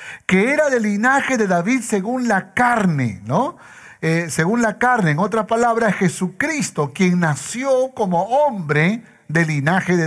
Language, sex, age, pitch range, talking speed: Spanish, male, 60-79, 165-225 Hz, 150 wpm